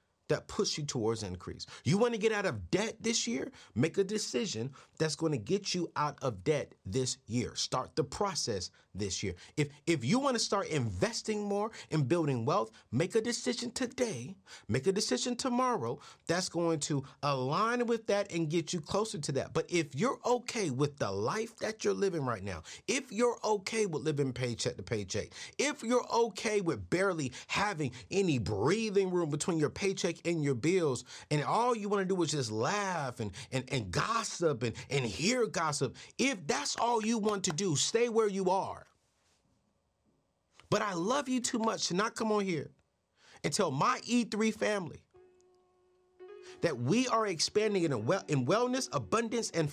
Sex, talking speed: male, 180 wpm